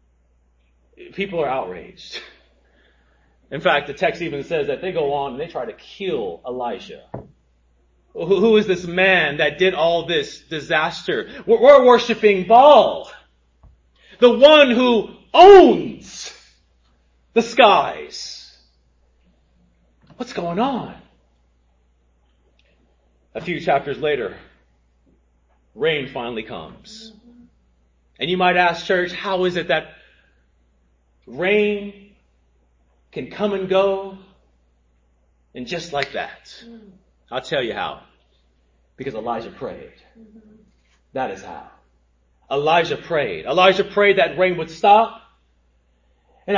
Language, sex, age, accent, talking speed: English, male, 30-49, American, 110 wpm